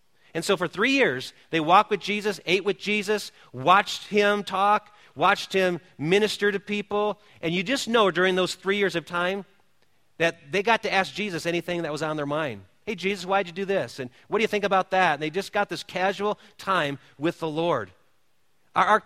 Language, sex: English, male